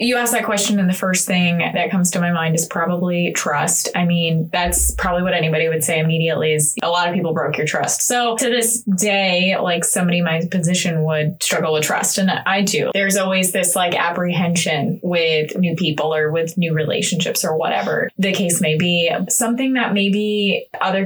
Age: 20-39